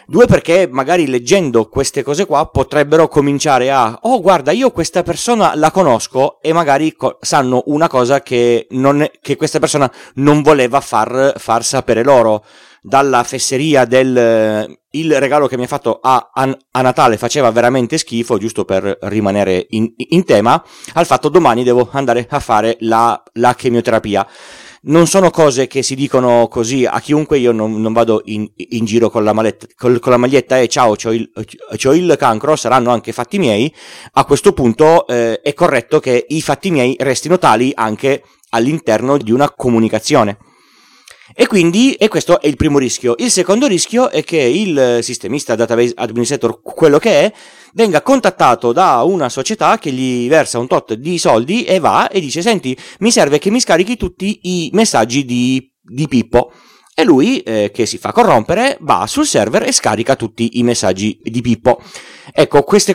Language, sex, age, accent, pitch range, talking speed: Italian, male, 30-49, native, 120-160 Hz, 180 wpm